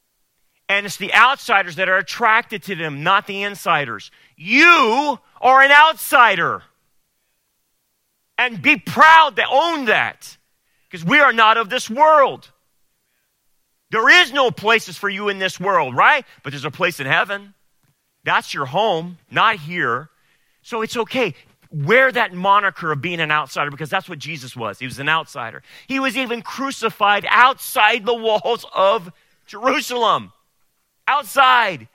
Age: 40-59